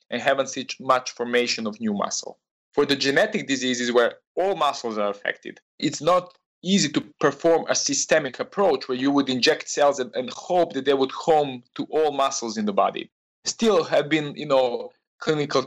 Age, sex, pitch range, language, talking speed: 20-39, male, 125-155 Hz, English, 190 wpm